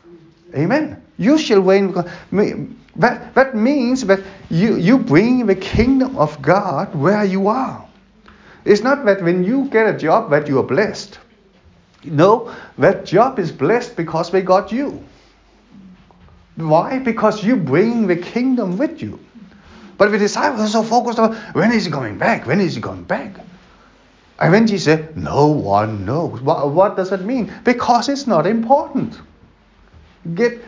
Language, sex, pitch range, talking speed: English, male, 165-235 Hz, 160 wpm